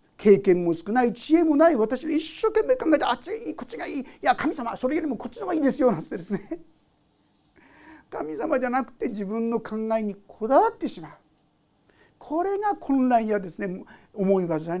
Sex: male